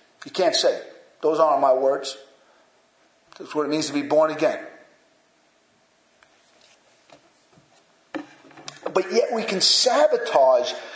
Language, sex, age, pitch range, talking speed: English, male, 40-59, 190-275 Hz, 110 wpm